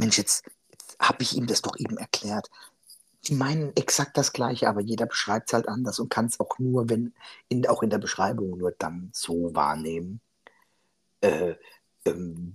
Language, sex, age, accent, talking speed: German, male, 50-69, German, 175 wpm